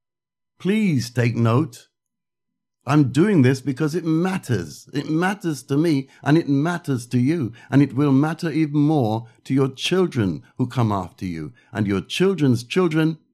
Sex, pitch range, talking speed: male, 110-145 Hz, 155 wpm